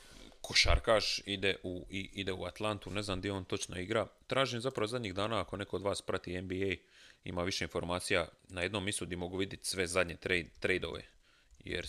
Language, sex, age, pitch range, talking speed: Croatian, male, 30-49, 90-105 Hz, 165 wpm